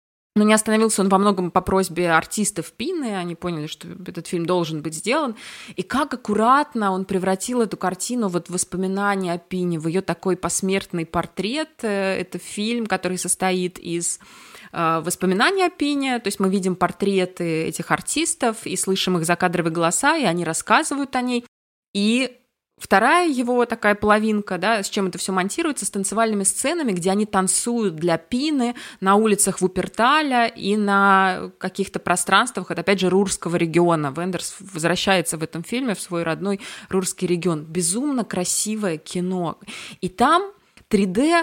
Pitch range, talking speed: 175-225 Hz, 150 wpm